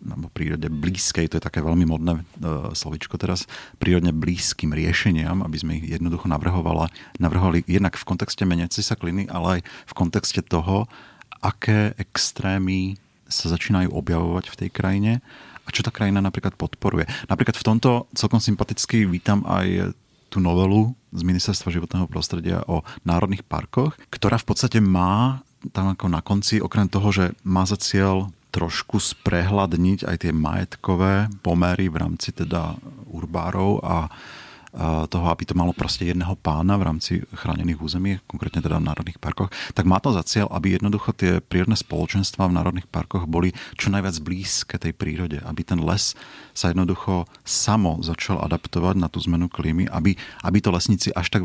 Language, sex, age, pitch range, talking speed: Slovak, male, 40-59, 85-100 Hz, 160 wpm